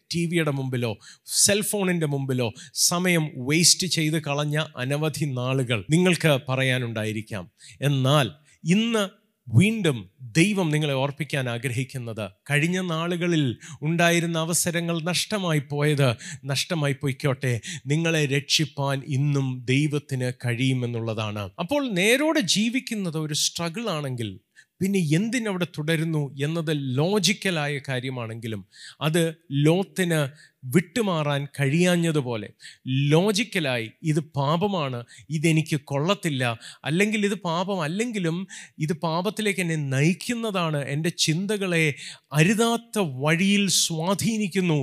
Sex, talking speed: male, 85 wpm